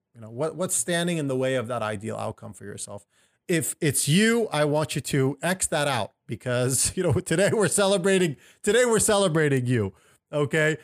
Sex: male